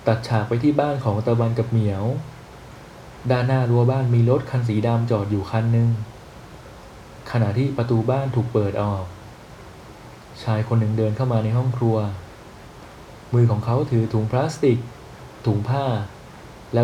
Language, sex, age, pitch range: Thai, male, 20-39, 110-125 Hz